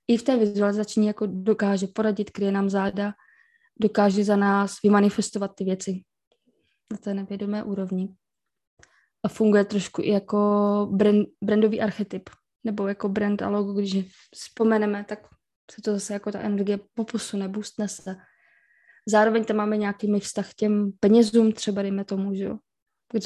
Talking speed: 145 wpm